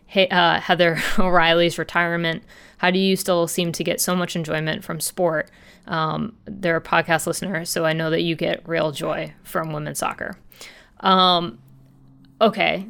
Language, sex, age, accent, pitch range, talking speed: English, female, 20-39, American, 170-200 Hz, 165 wpm